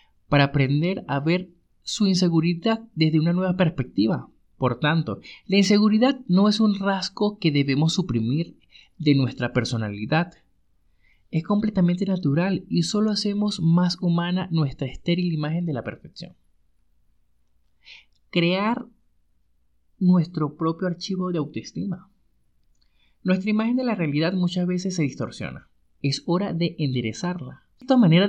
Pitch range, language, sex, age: 135-200 Hz, Spanish, male, 30-49